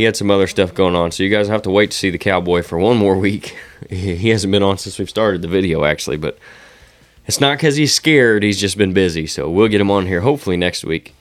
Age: 20-39